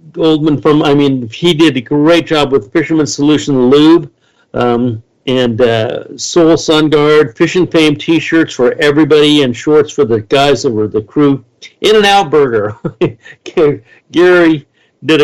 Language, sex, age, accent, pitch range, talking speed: English, male, 60-79, American, 120-155 Hz, 160 wpm